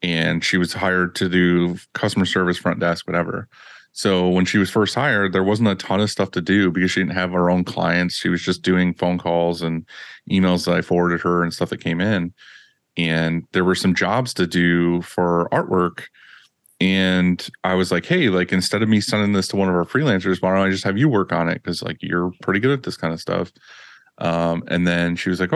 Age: 30-49